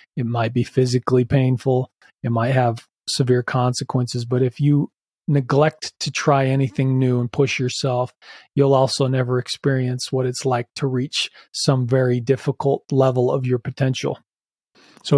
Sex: male